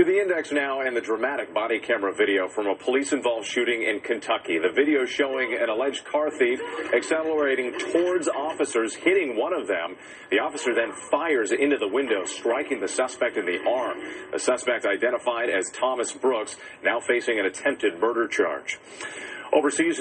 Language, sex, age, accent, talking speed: English, male, 40-59, American, 170 wpm